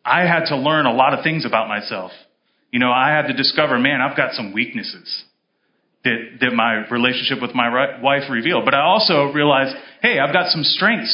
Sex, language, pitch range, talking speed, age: male, English, 130-170 Hz, 205 wpm, 30-49